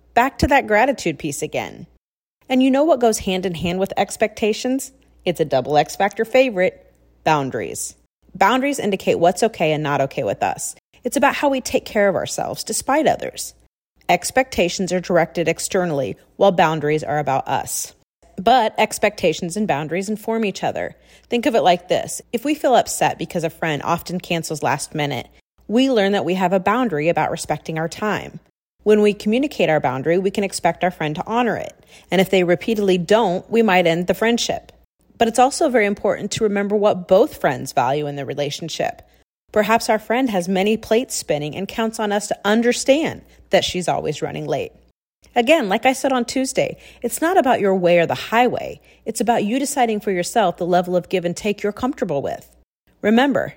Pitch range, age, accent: 170-235 Hz, 30-49, American